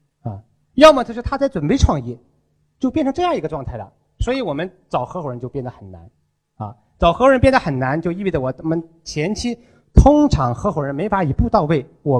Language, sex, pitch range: Chinese, male, 135-200 Hz